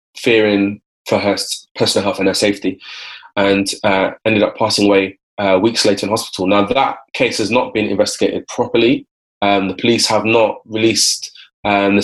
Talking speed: 175 wpm